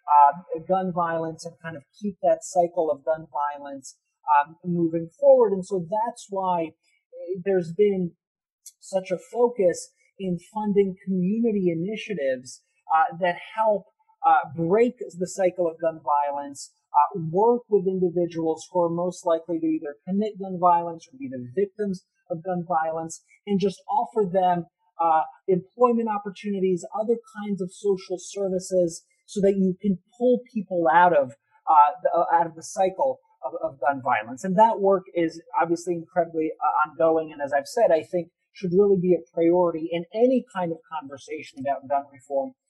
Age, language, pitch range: 40-59, English, 165-210 Hz